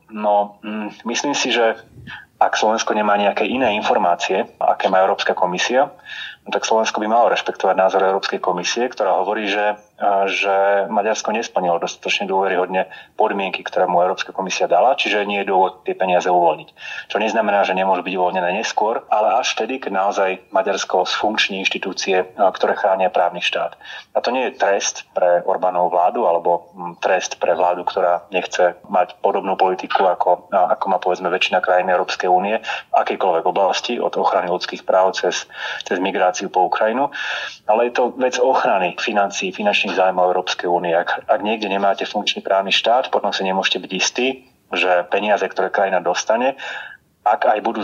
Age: 30-49